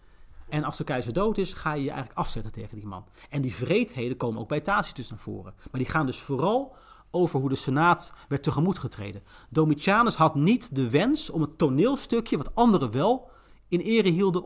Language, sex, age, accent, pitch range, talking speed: Dutch, male, 40-59, Dutch, 130-185 Hz, 200 wpm